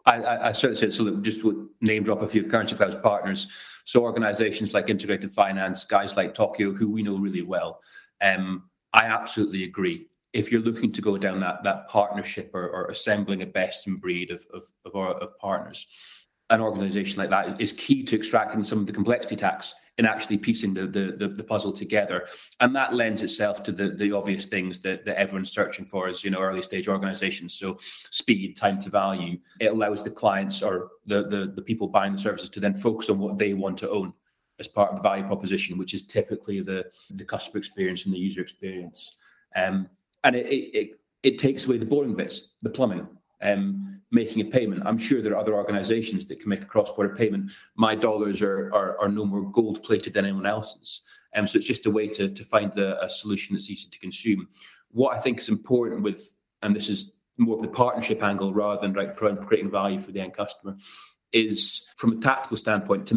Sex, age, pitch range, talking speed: male, 30-49, 95-110 Hz, 210 wpm